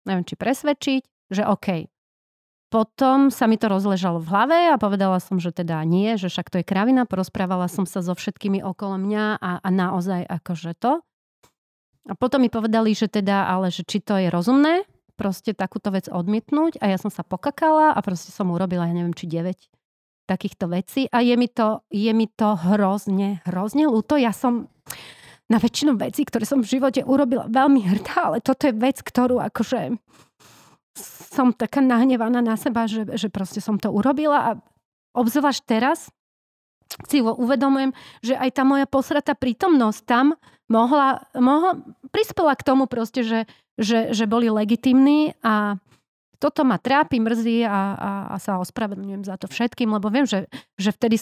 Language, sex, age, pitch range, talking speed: Slovak, female, 30-49, 195-265 Hz, 170 wpm